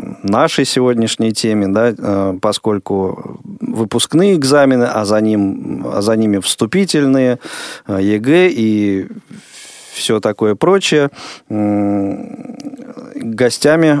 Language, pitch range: Russian, 105-140 Hz